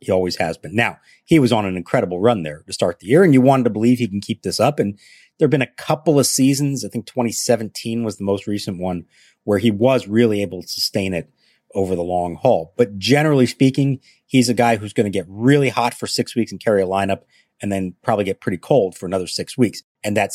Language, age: English, 40-59